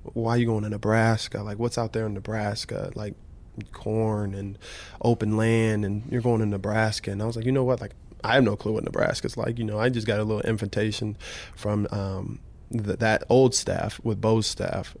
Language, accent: English, American